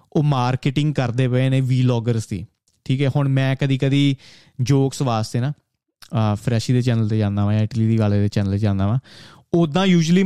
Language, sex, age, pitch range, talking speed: Punjabi, male, 20-39, 120-145 Hz, 195 wpm